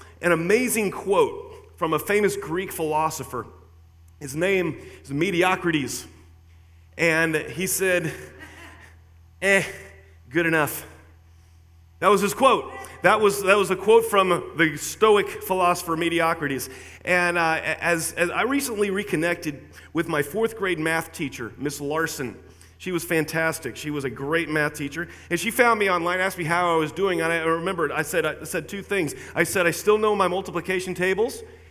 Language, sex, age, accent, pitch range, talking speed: English, male, 30-49, American, 155-195 Hz, 160 wpm